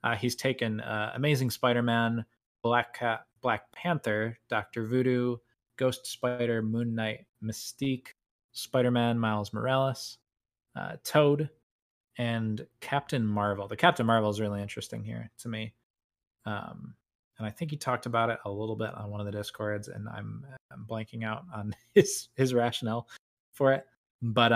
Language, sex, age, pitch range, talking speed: English, male, 20-39, 105-125 Hz, 150 wpm